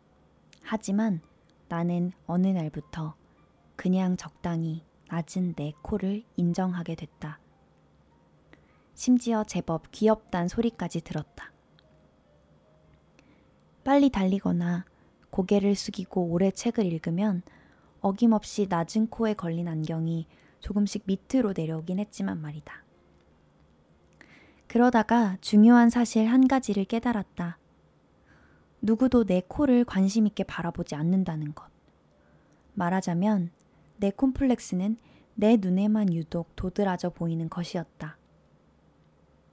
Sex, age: female, 20-39